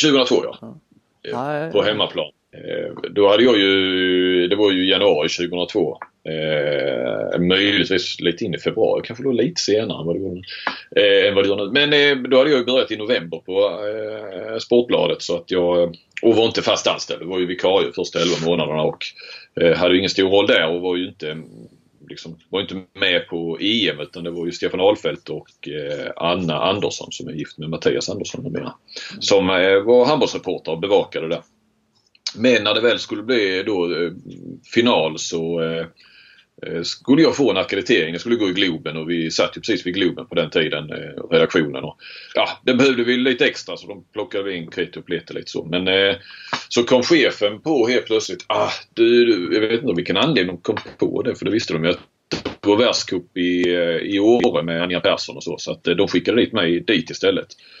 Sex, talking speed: male, 190 wpm